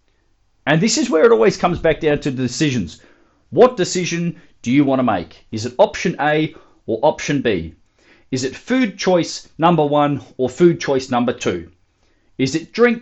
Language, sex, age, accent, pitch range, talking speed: English, male, 30-49, Australian, 115-170 Hz, 185 wpm